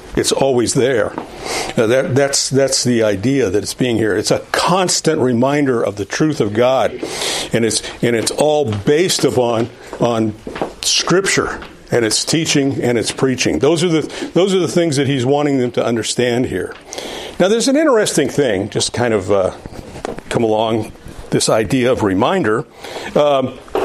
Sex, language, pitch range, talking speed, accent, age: male, English, 130-200 Hz, 170 wpm, American, 50-69